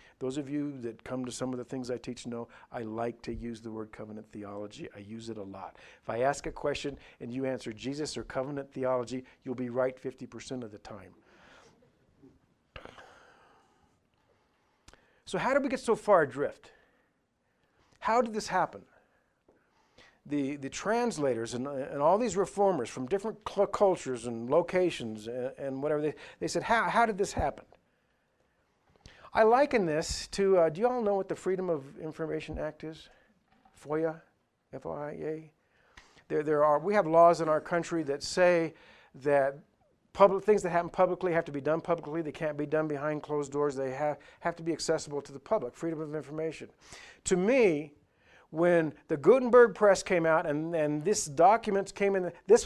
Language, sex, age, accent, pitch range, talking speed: English, male, 50-69, American, 130-185 Hz, 175 wpm